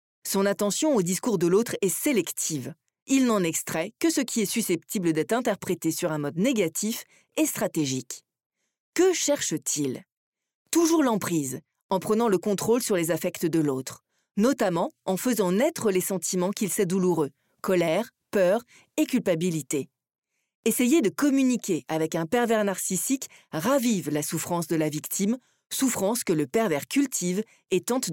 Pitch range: 170-240 Hz